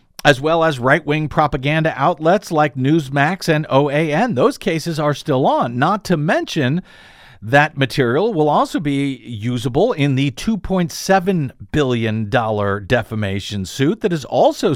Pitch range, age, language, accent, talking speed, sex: 120-170 Hz, 50-69, English, American, 135 wpm, male